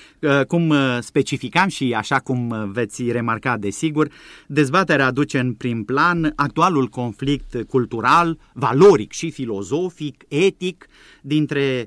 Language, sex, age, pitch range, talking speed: Romanian, male, 30-49, 110-145 Hz, 105 wpm